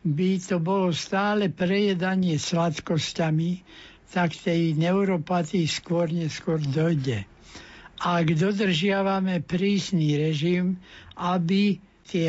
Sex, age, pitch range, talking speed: male, 60-79, 165-190 Hz, 90 wpm